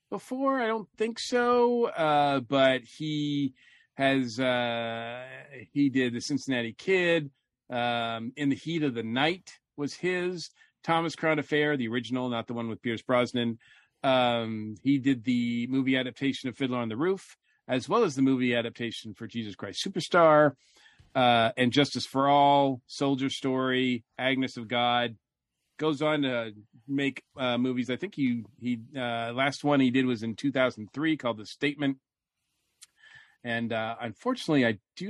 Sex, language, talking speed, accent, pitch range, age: male, English, 155 wpm, American, 120-150 Hz, 40-59